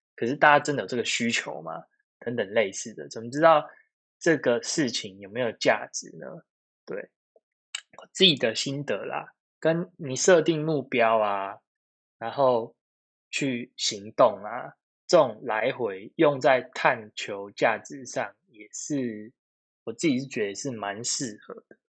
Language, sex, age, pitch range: Chinese, male, 20-39, 110-150 Hz